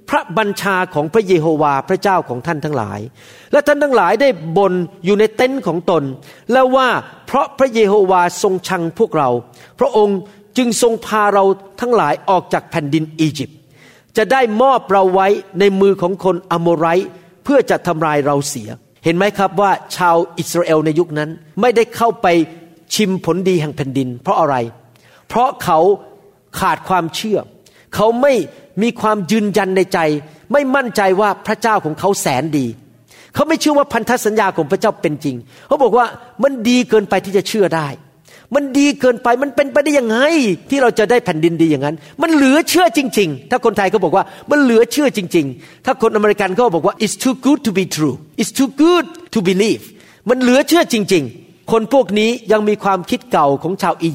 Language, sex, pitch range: Thai, male, 165-230 Hz